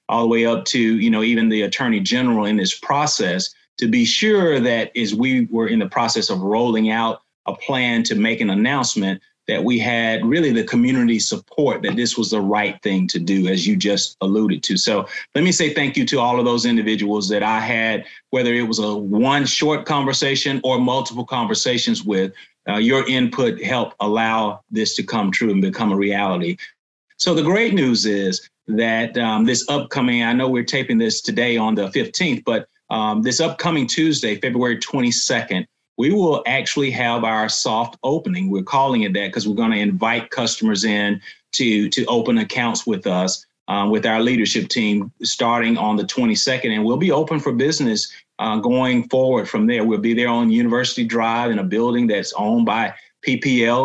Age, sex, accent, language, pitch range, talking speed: 30-49, male, American, English, 110-150 Hz, 195 wpm